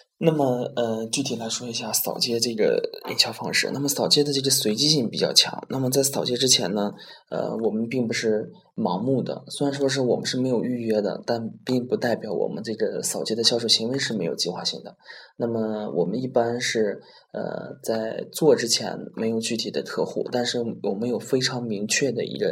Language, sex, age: Chinese, male, 20-39